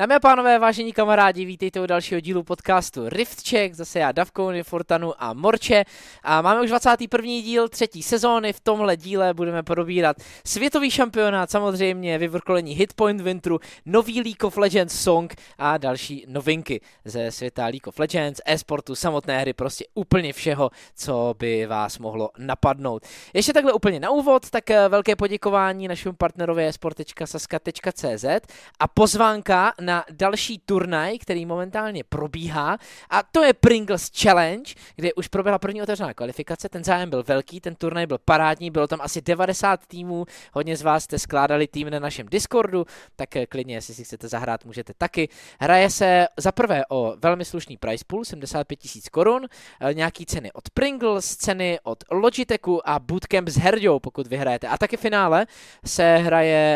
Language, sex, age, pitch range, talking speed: Czech, male, 20-39, 145-200 Hz, 160 wpm